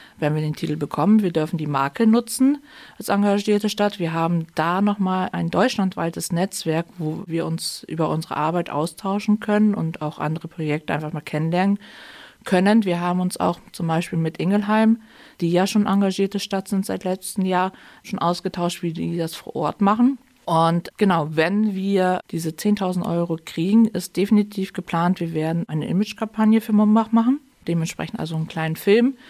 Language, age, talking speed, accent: German, 50-69, 170 wpm, German